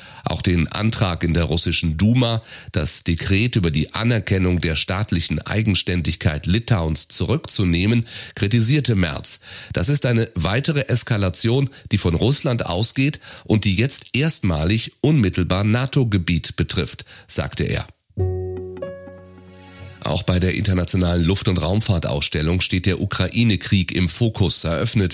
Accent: German